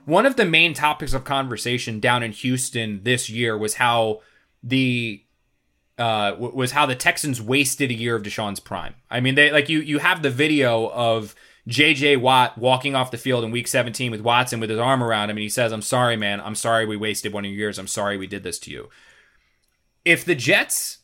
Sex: male